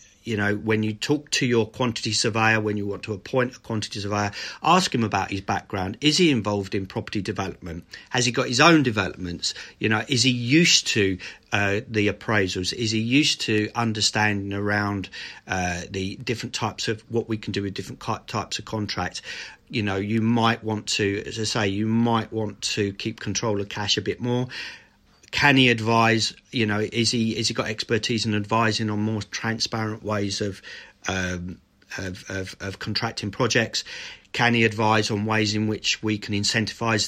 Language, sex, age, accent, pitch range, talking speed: English, male, 40-59, British, 105-115 Hz, 190 wpm